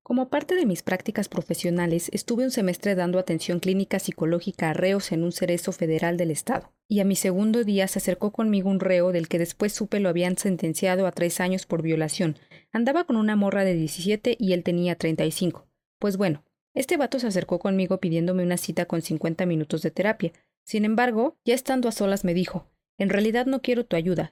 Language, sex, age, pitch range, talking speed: Spanish, female, 30-49, 175-225 Hz, 200 wpm